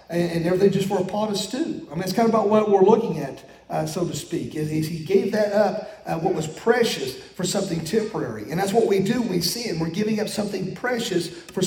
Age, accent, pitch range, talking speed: 40-59, American, 185-225 Hz, 240 wpm